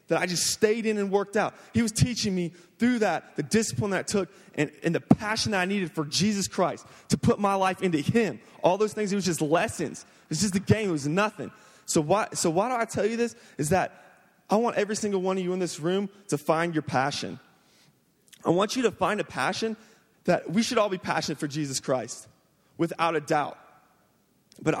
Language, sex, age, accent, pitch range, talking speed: English, male, 20-39, American, 160-215 Hz, 230 wpm